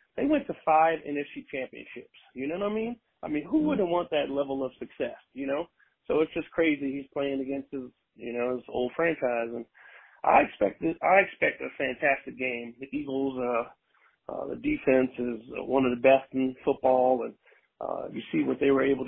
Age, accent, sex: 40-59, American, male